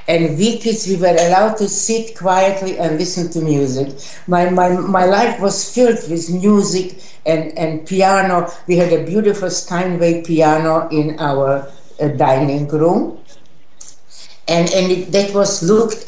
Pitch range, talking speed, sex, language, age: 155-195 Hz, 155 wpm, female, English, 60-79